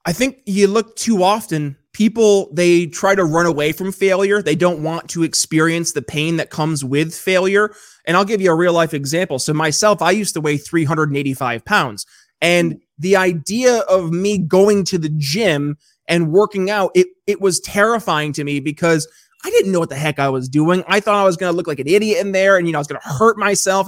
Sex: male